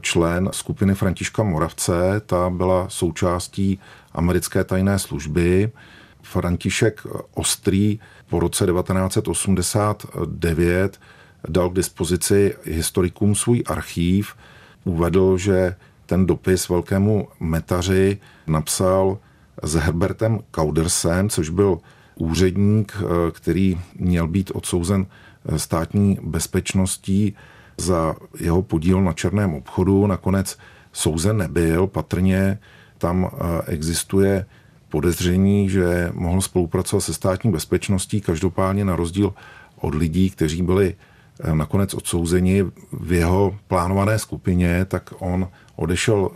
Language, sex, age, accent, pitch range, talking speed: Czech, male, 50-69, native, 90-100 Hz, 95 wpm